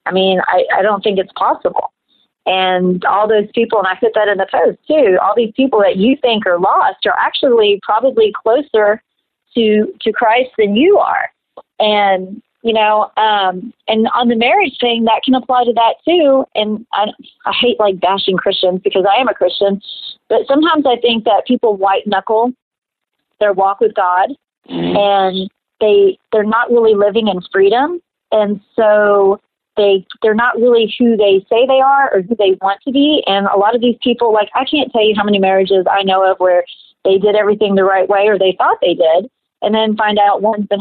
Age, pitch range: 40-59, 200-245 Hz